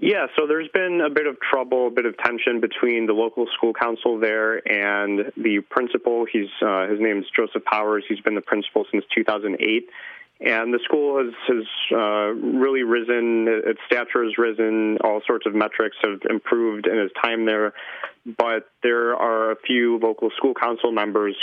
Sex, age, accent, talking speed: male, 20-39, American, 180 wpm